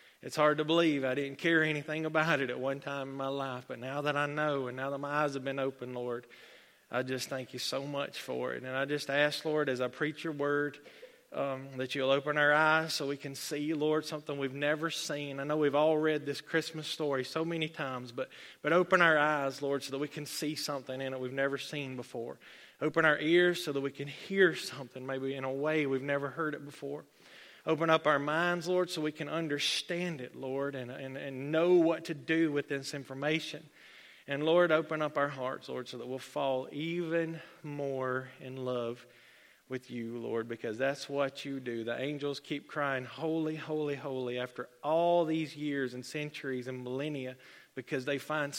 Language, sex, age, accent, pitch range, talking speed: English, male, 30-49, American, 135-155 Hz, 210 wpm